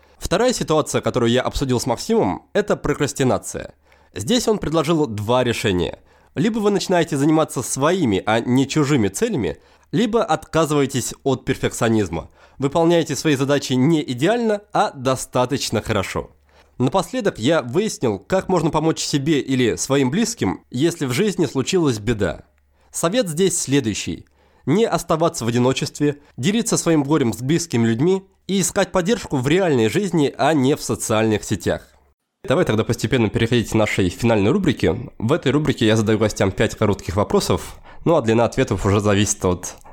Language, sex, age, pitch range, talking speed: Russian, male, 20-39, 115-165 Hz, 145 wpm